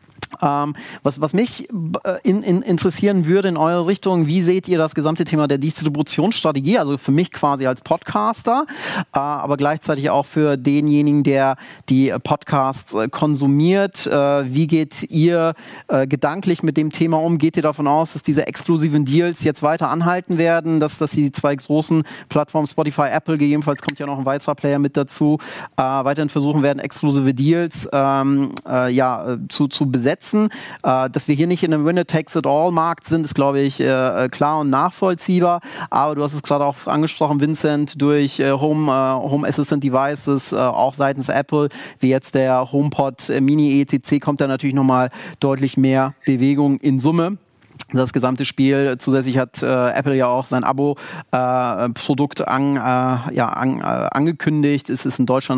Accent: German